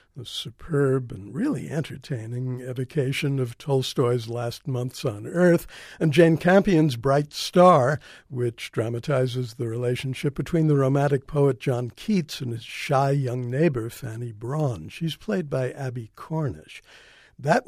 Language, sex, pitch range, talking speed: English, male, 125-155 Hz, 135 wpm